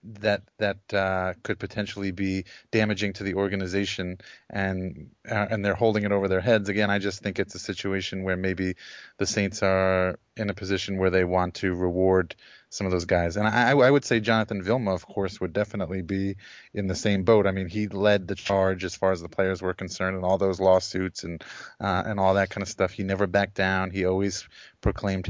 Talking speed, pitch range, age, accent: 215 wpm, 95-105 Hz, 20-39, American